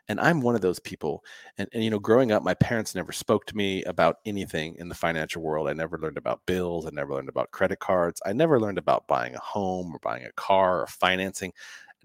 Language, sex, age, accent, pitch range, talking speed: English, male, 30-49, American, 85-115 Hz, 245 wpm